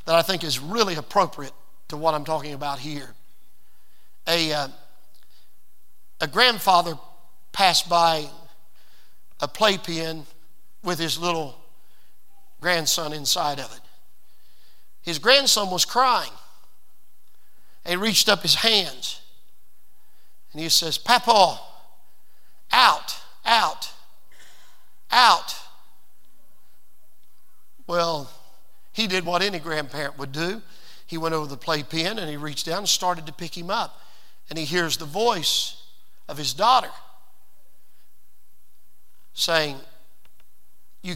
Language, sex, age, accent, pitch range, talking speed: English, male, 50-69, American, 145-185 Hz, 110 wpm